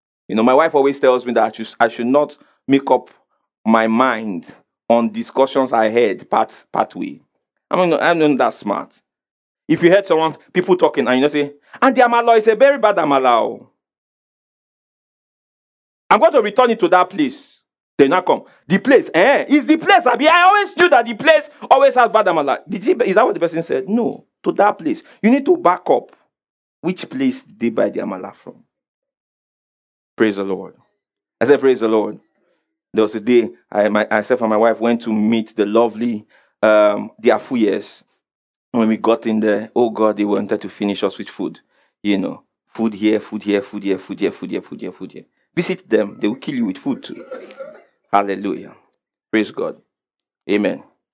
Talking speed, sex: 195 wpm, male